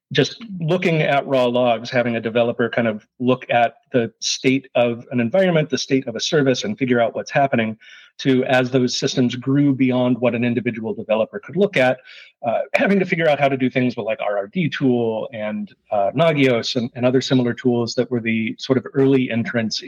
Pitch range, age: 115-135 Hz, 40-59